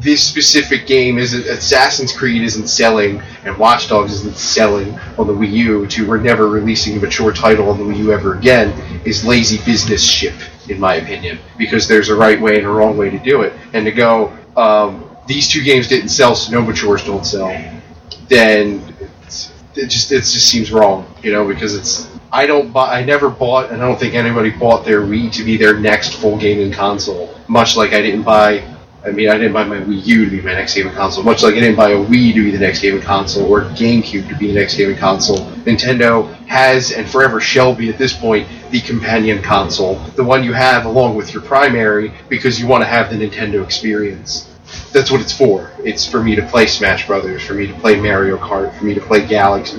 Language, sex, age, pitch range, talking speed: English, male, 30-49, 100-115 Hz, 225 wpm